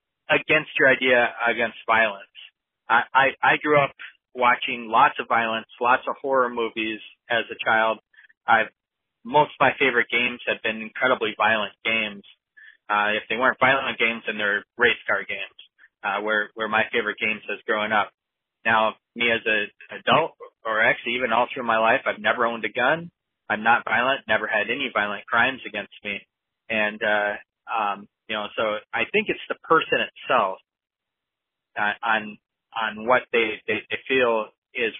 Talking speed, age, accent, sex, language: 170 wpm, 20-39, American, male, English